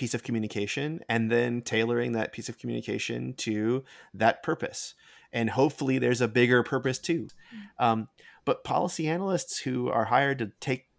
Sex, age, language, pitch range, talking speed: male, 30-49, English, 110-135 Hz, 160 wpm